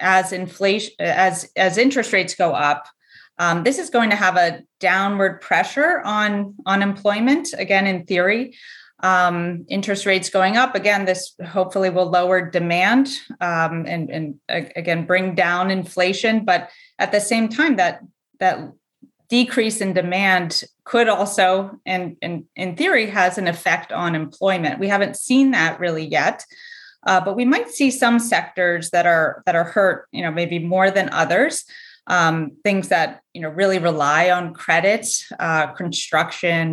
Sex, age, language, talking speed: female, 30-49, English, 160 wpm